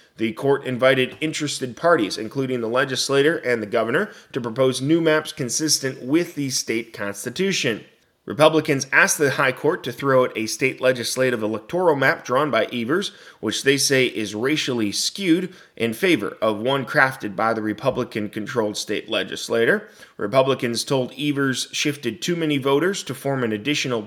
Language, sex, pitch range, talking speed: English, male, 115-145 Hz, 155 wpm